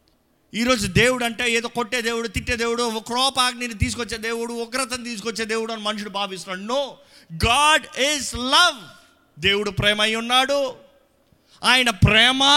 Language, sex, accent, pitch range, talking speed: Telugu, male, native, 175-240 Hz, 125 wpm